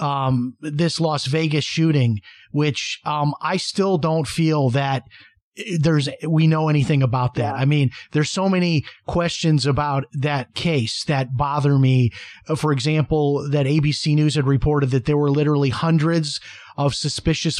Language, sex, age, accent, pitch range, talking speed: English, male, 30-49, American, 140-165 Hz, 150 wpm